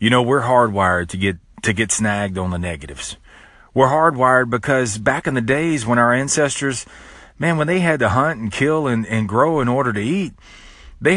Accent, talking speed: American, 205 wpm